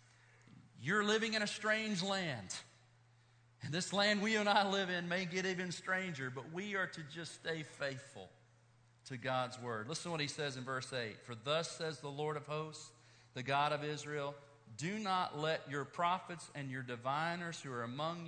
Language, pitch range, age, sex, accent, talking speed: English, 125-175 Hz, 40-59, male, American, 190 wpm